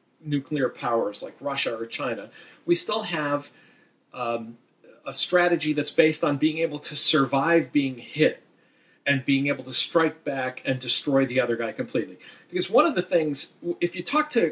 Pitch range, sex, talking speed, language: 125-170 Hz, male, 175 wpm, English